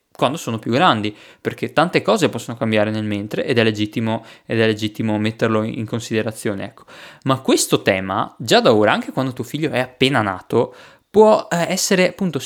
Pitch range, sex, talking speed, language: 125-185 Hz, male, 180 wpm, Italian